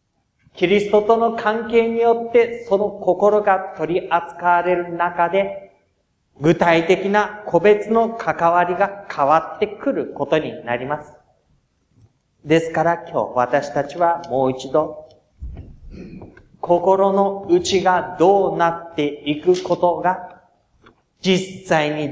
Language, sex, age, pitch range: Japanese, male, 40-59, 160-215 Hz